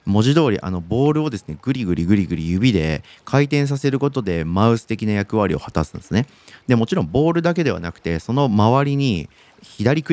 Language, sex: Japanese, male